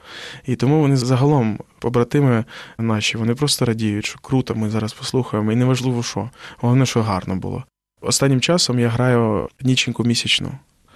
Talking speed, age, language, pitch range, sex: 150 wpm, 20-39, Ukrainian, 110-130 Hz, male